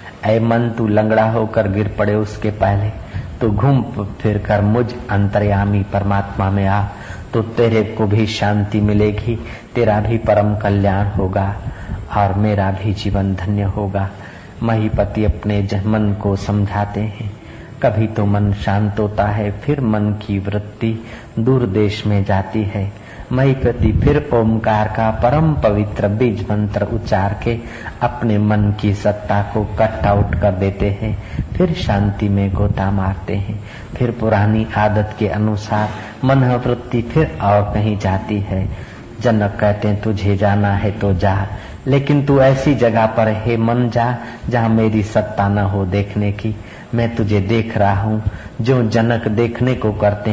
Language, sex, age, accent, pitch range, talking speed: Hindi, male, 50-69, native, 100-115 Hz, 150 wpm